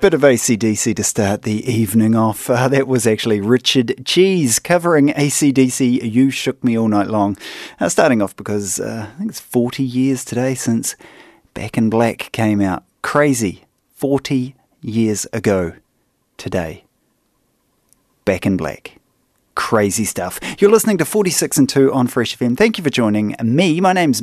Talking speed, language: 160 wpm, English